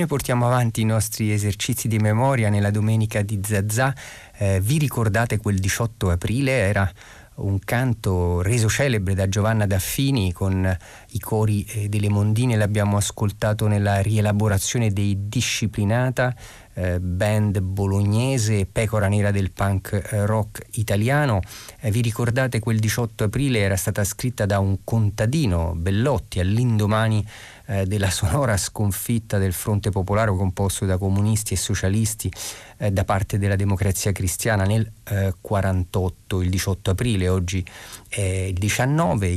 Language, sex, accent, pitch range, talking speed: Italian, male, native, 95-110 Hz, 130 wpm